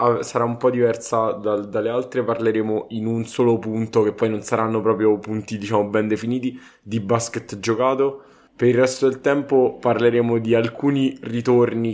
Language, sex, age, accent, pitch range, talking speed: Italian, male, 20-39, native, 105-120 Hz, 165 wpm